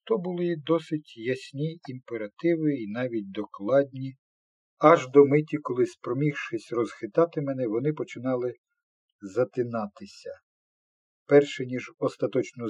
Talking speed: 100 wpm